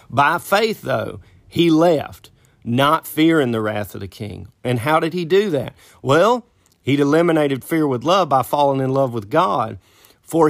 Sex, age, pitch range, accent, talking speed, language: male, 40-59, 115-155 Hz, American, 175 wpm, English